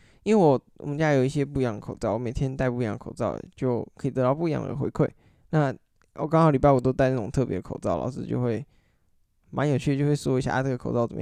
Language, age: Chinese, 10-29